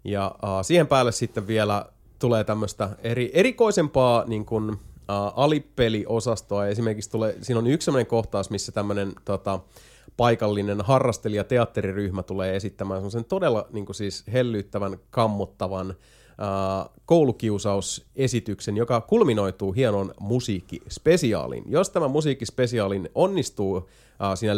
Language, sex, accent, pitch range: Finnish, male, native, 100-125 Hz